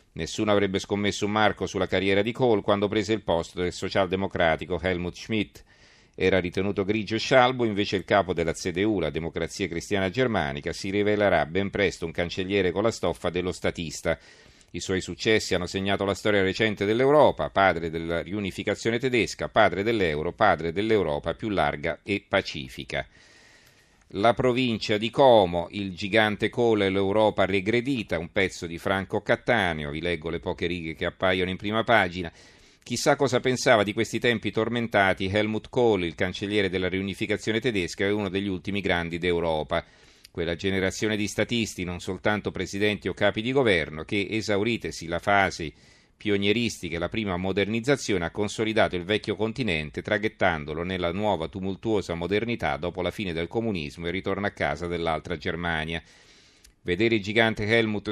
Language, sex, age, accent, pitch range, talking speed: Italian, male, 40-59, native, 90-110 Hz, 155 wpm